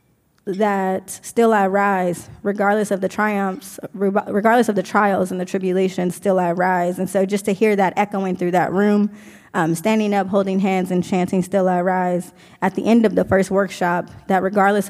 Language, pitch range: English, 185-205 Hz